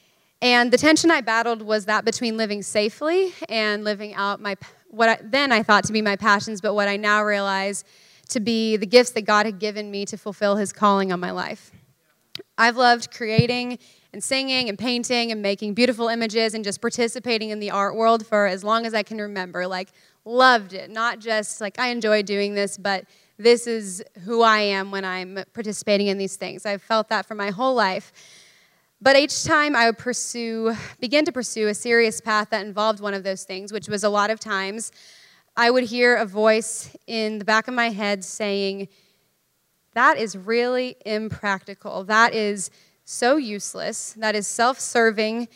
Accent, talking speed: American, 190 wpm